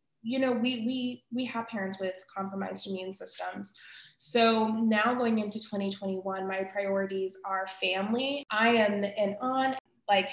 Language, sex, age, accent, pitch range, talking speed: English, female, 20-39, American, 195-230 Hz, 145 wpm